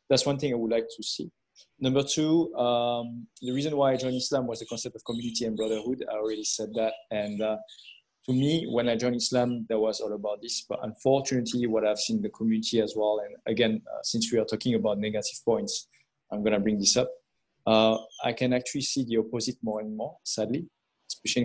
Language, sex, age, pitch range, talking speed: English, male, 20-39, 110-125 Hz, 220 wpm